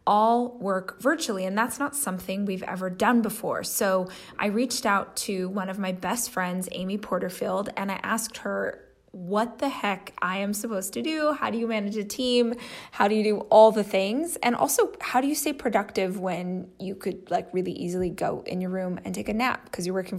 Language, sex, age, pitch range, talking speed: English, female, 20-39, 190-240 Hz, 215 wpm